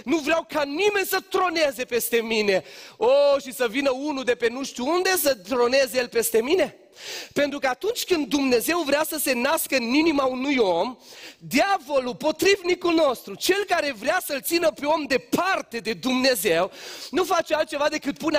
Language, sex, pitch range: Romanian, male, 250-320 Hz